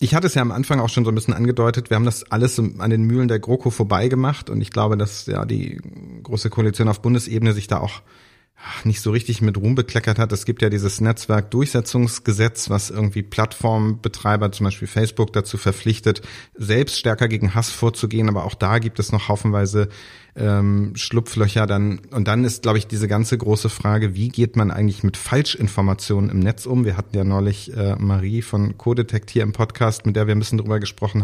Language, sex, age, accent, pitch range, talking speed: German, male, 30-49, German, 105-120 Hz, 205 wpm